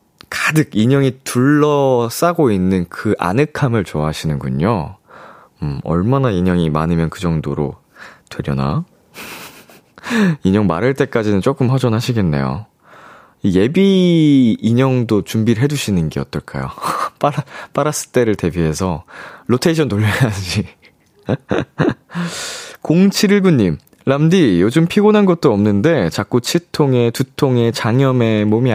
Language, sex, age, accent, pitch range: Korean, male, 20-39, native, 95-150 Hz